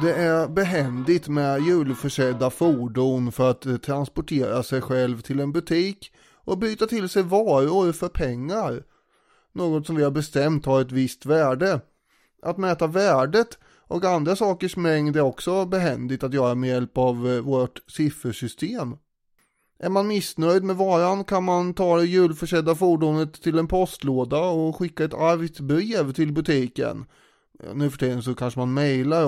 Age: 30-49